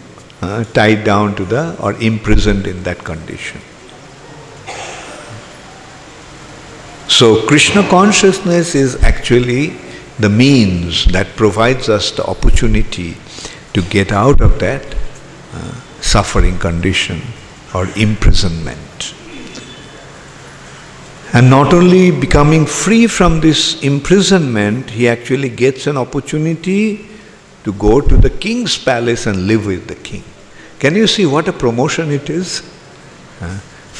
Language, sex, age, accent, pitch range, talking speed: English, male, 50-69, Indian, 105-165 Hz, 115 wpm